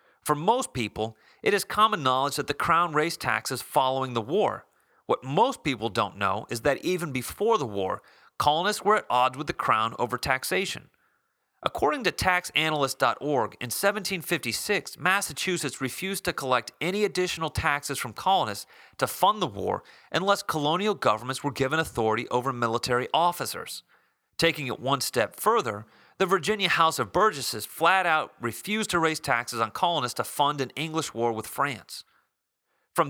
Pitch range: 125-180 Hz